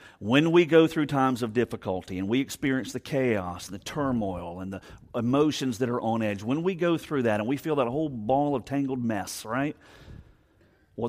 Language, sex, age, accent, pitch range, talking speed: English, male, 50-69, American, 115-150 Hz, 200 wpm